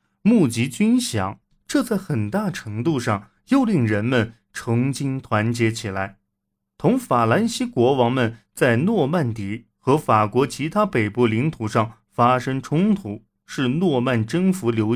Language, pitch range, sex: Chinese, 110-165 Hz, male